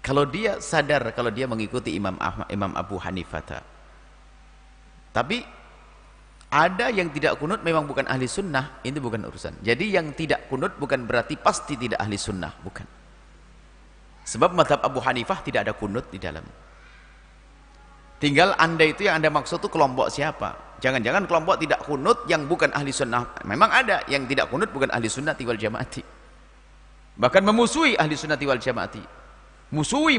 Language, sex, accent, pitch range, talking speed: Indonesian, male, native, 110-155 Hz, 150 wpm